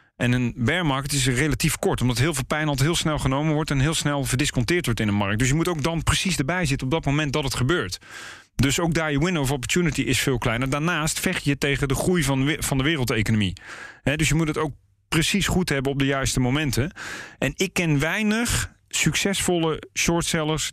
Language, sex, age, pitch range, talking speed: Dutch, male, 40-59, 125-150 Hz, 215 wpm